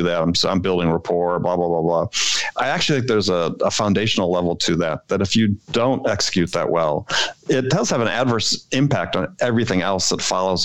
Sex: male